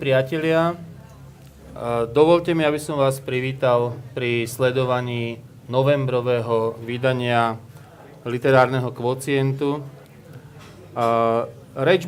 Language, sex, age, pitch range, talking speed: Slovak, male, 30-49, 120-150 Hz, 70 wpm